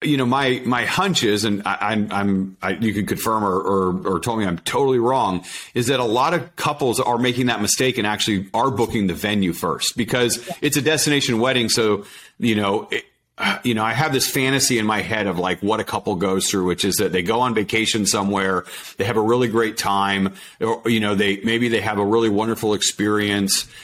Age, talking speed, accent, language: 40-59, 220 wpm, American, English